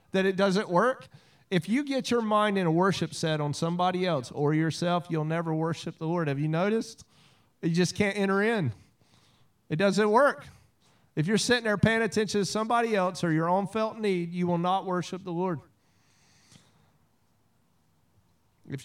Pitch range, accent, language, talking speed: 150-200 Hz, American, English, 175 wpm